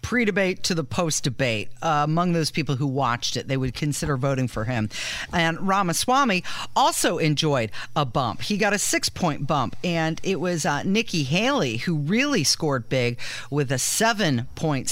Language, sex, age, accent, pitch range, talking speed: English, female, 40-59, American, 140-195 Hz, 160 wpm